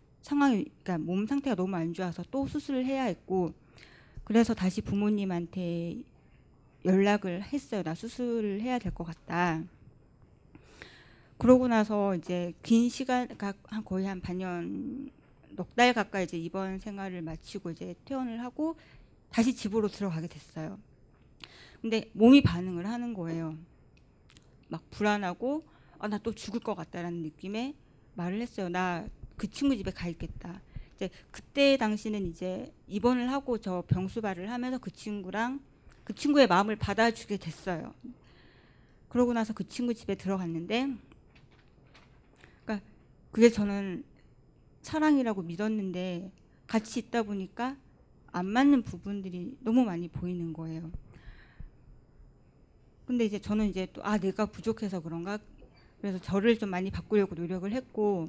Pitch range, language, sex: 180-235 Hz, Korean, female